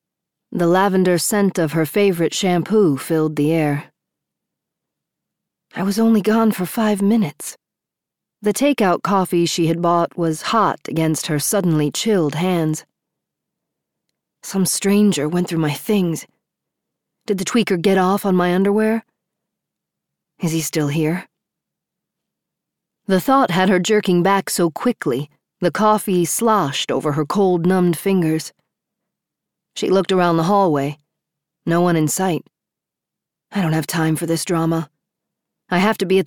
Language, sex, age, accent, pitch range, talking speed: English, female, 40-59, American, 160-200 Hz, 140 wpm